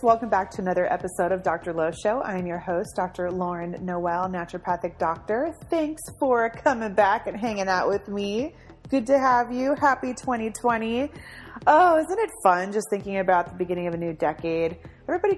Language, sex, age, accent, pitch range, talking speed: English, female, 30-49, American, 165-215 Hz, 185 wpm